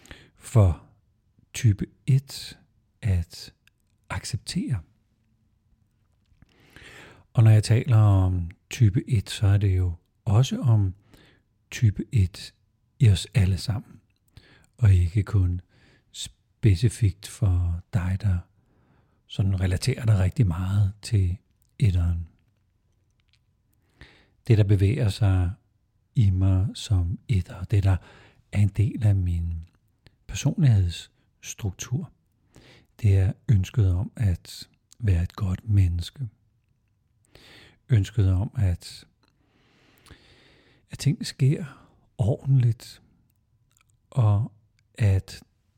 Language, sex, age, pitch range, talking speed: Danish, male, 50-69, 95-120 Hz, 95 wpm